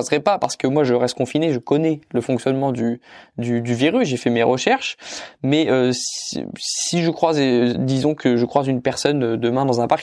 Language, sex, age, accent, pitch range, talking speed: French, male, 20-39, French, 125-155 Hz, 225 wpm